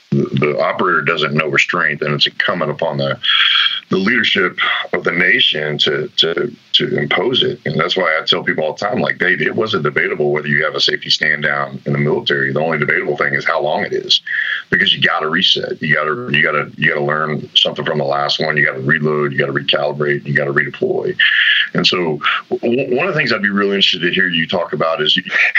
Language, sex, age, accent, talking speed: English, male, 40-59, American, 240 wpm